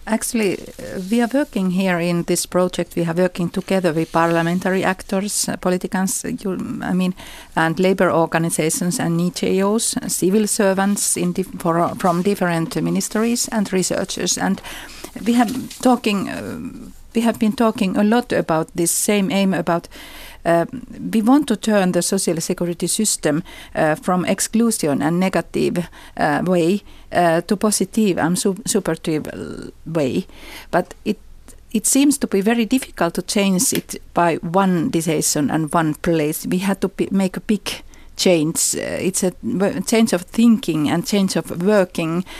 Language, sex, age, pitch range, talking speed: Finnish, female, 50-69, 175-225 Hz, 160 wpm